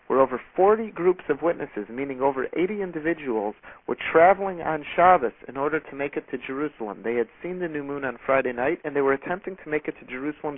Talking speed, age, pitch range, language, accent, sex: 220 wpm, 50-69, 140-180 Hz, English, American, male